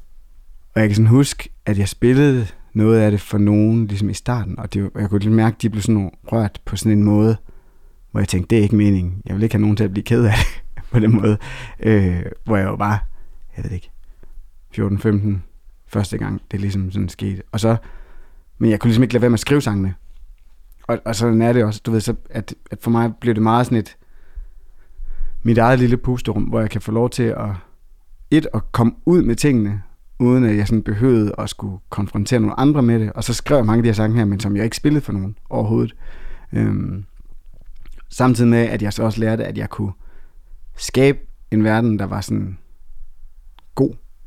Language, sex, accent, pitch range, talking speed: Danish, male, native, 95-115 Hz, 215 wpm